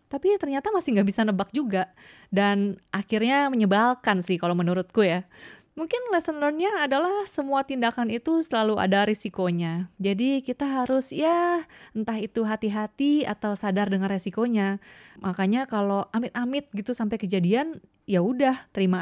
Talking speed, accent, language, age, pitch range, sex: 140 wpm, native, Indonesian, 20-39, 185-230 Hz, female